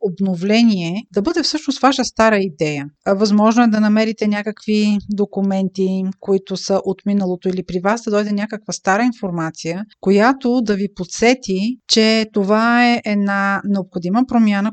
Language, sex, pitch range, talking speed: Bulgarian, female, 190-230 Hz, 145 wpm